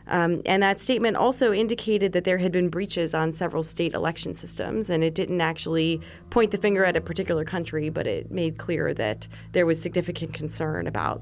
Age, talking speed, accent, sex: 30-49, 200 wpm, American, female